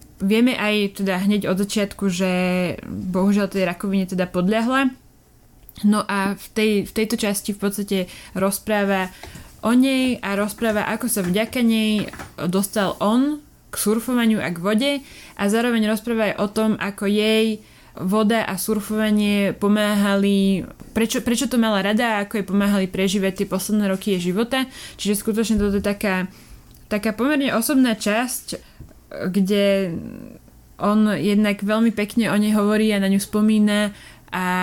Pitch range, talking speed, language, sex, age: 195-220 Hz, 150 wpm, Slovak, female, 20-39